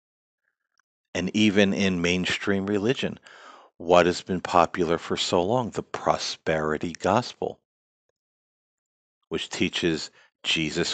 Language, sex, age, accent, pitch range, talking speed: English, male, 50-69, American, 85-105 Hz, 100 wpm